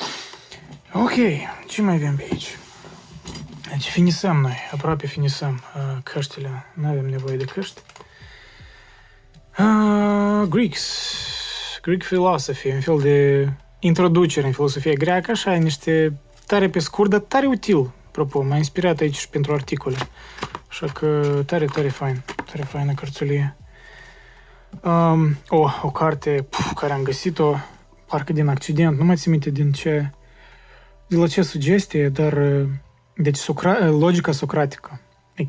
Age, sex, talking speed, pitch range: 20-39, male, 135 wpm, 135-170 Hz